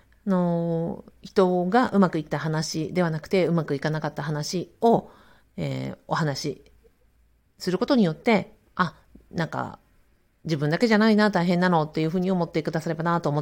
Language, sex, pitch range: Japanese, female, 155-220 Hz